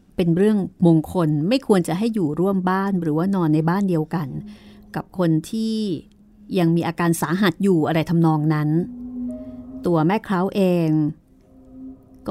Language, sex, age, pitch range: Thai, female, 30-49, 160-220 Hz